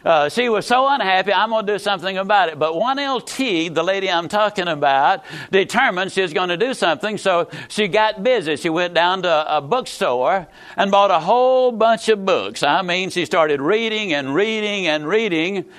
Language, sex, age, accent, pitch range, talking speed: English, male, 60-79, American, 175-220 Hz, 200 wpm